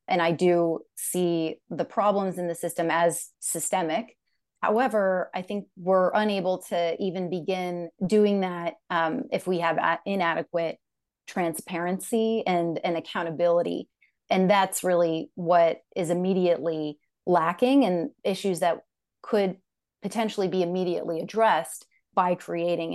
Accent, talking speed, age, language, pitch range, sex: American, 125 wpm, 30-49, English, 170-190 Hz, female